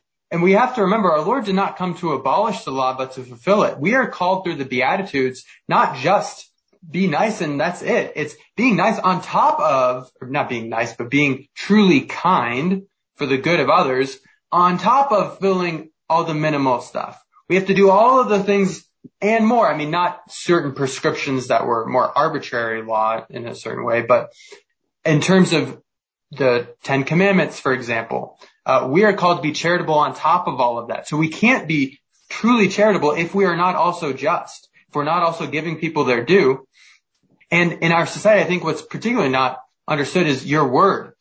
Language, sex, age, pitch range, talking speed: English, male, 20-39, 135-195 Hz, 200 wpm